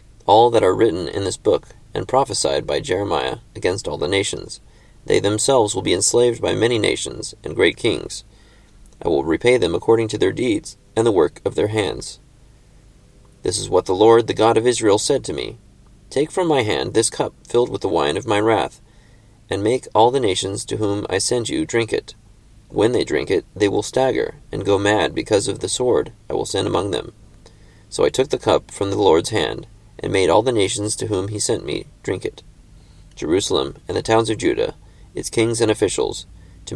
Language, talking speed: English, 210 wpm